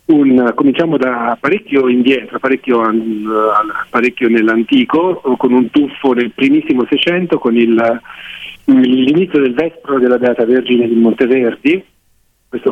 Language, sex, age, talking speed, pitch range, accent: Italian, male, 50-69, 130 wpm, 115-150 Hz, native